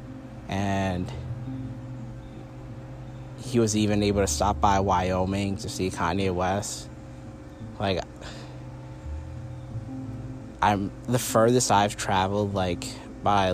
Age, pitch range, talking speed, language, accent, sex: 20-39, 95-110 Hz, 95 wpm, English, American, male